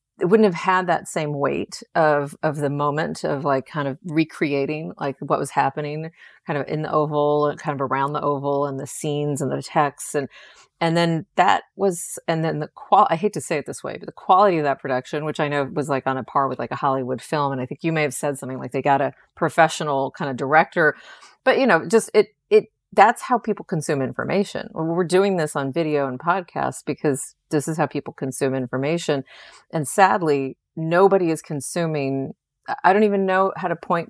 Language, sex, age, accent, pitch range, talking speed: English, female, 30-49, American, 140-170 Hz, 220 wpm